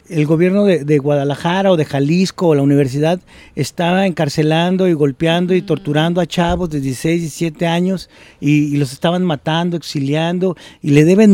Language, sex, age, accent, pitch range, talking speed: Spanish, male, 40-59, Mexican, 145-180 Hz, 175 wpm